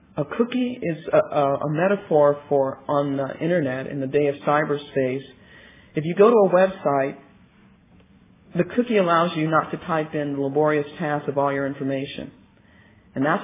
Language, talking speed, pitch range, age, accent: English, 170 wpm, 140-185 Hz, 50-69, American